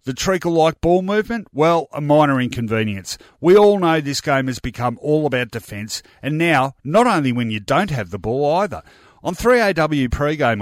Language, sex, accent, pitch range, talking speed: English, male, Australian, 120-160 Hz, 180 wpm